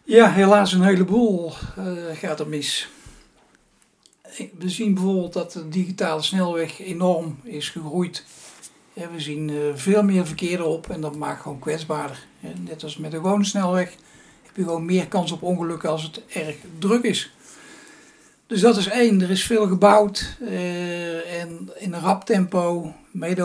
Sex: male